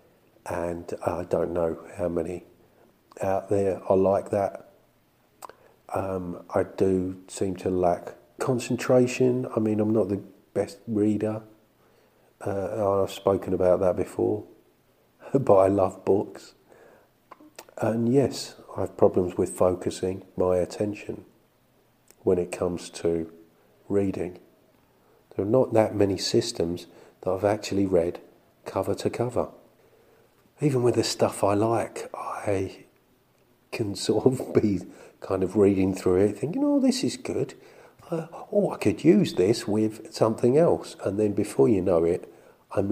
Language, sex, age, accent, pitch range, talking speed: English, male, 50-69, British, 90-110 Hz, 140 wpm